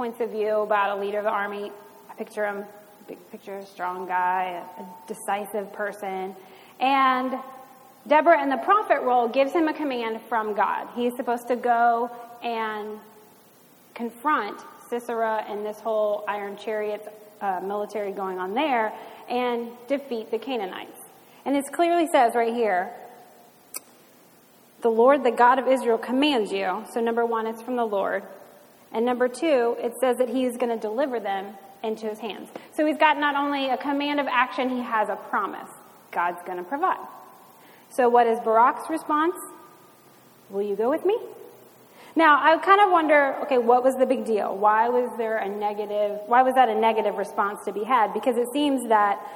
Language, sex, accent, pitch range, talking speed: English, female, American, 210-270 Hz, 175 wpm